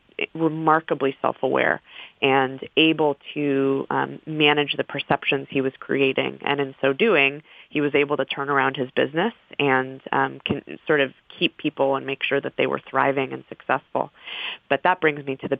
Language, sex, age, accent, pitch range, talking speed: English, female, 30-49, American, 135-155 Hz, 175 wpm